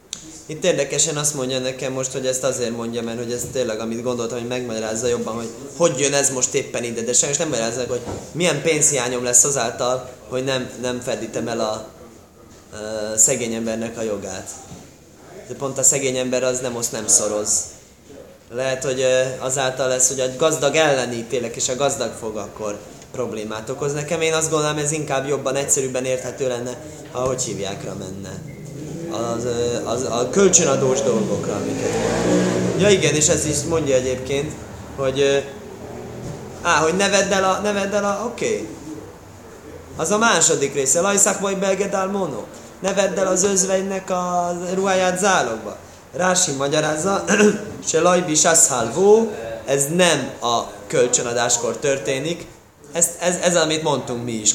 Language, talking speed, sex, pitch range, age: Hungarian, 155 wpm, male, 120-170 Hz, 20-39